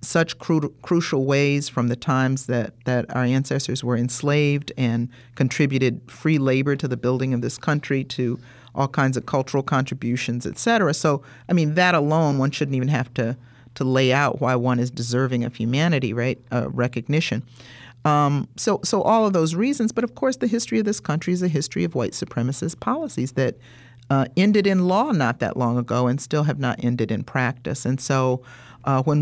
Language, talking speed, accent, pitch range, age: English, 190 wpm, American, 120-145 Hz, 50-69